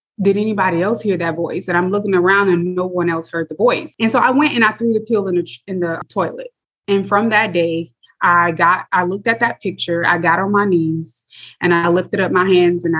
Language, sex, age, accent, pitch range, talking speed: English, female, 20-39, American, 170-195 Hz, 250 wpm